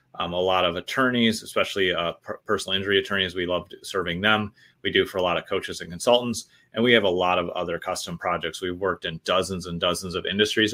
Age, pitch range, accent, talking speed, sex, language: 30-49, 90-110 Hz, American, 225 wpm, male, English